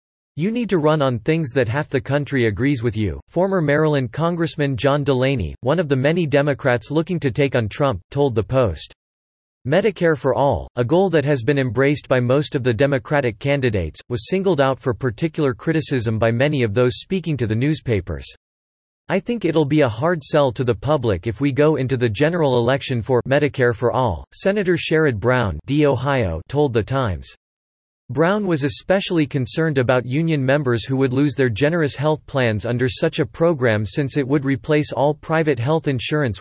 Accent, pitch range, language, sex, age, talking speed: American, 120-155 Hz, English, male, 40-59, 190 wpm